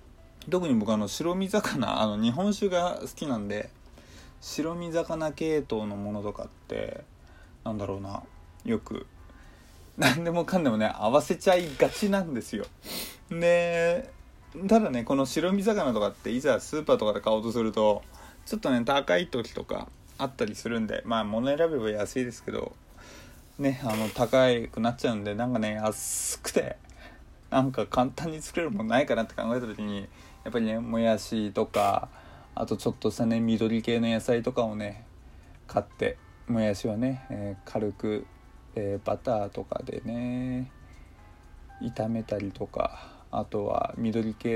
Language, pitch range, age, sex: Japanese, 105-135 Hz, 20-39, male